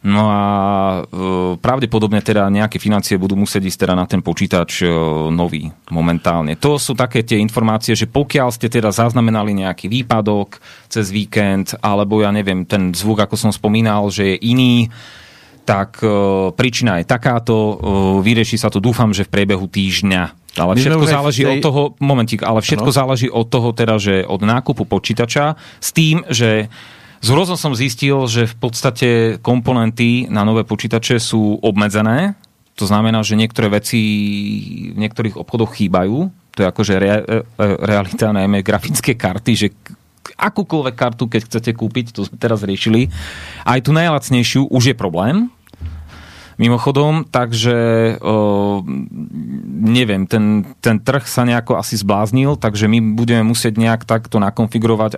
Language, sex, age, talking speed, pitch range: Slovak, male, 40-59, 150 wpm, 100-120 Hz